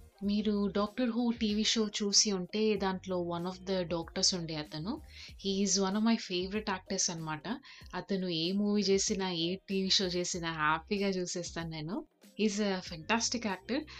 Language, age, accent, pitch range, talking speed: Telugu, 30-49, native, 175-215 Hz, 160 wpm